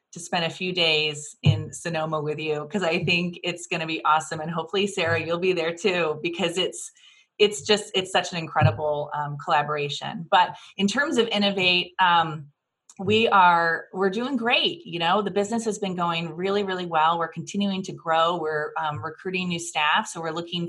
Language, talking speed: English, 195 wpm